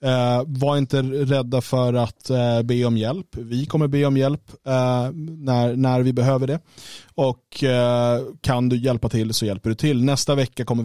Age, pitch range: 20-39, 110-130 Hz